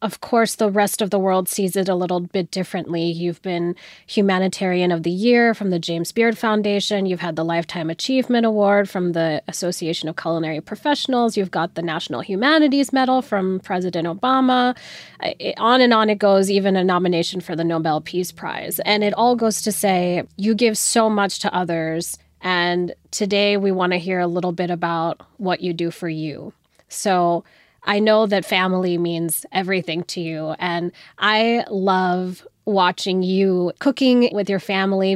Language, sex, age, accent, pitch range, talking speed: English, female, 20-39, American, 175-215 Hz, 175 wpm